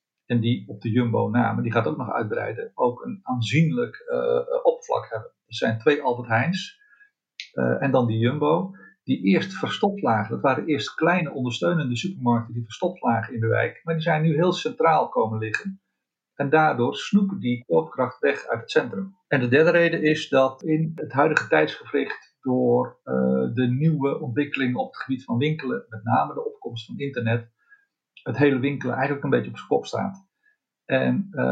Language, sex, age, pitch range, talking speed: Dutch, male, 50-69, 120-170 Hz, 180 wpm